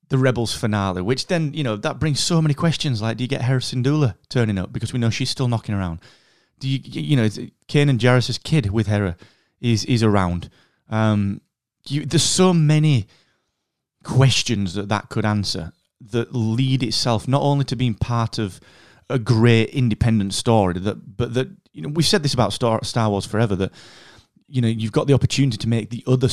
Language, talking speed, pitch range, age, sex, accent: English, 195 wpm, 105-135 Hz, 30-49, male, British